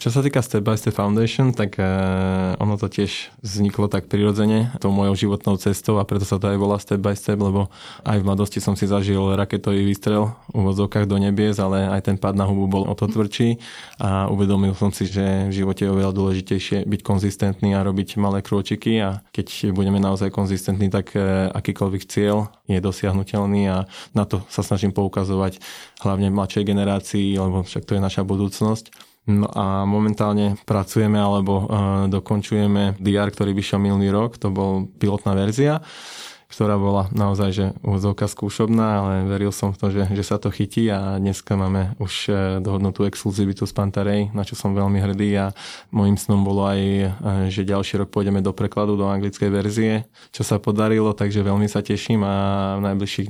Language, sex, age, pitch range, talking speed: Slovak, male, 20-39, 100-105 Hz, 180 wpm